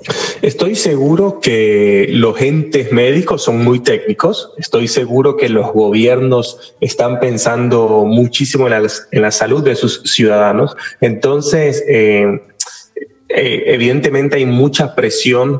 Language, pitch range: Spanish, 110-145 Hz